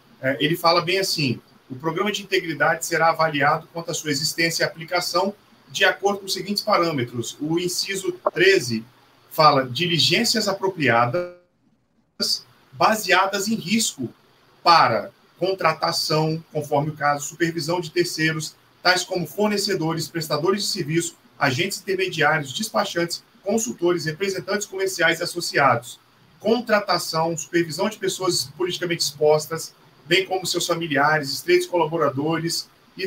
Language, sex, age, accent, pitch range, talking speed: Portuguese, male, 40-59, Brazilian, 155-185 Hz, 120 wpm